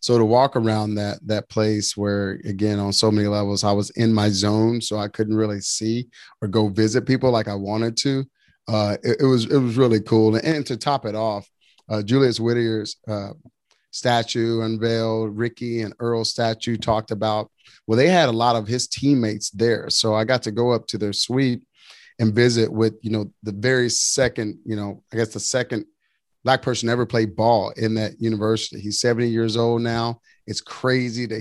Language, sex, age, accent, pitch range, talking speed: English, male, 30-49, American, 110-125 Hz, 200 wpm